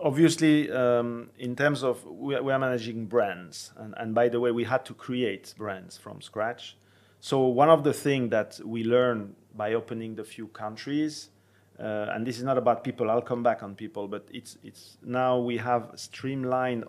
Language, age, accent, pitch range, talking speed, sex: Romanian, 40-59, French, 110-130 Hz, 190 wpm, male